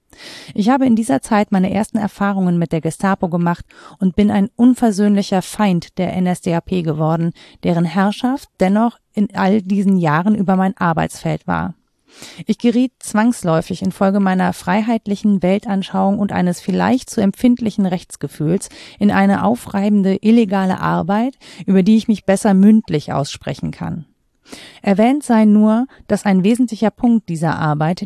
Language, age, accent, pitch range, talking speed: German, 40-59, German, 180-220 Hz, 140 wpm